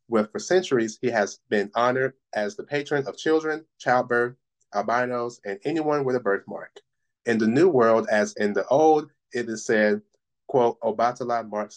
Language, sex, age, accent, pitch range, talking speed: English, male, 30-49, American, 110-140 Hz, 170 wpm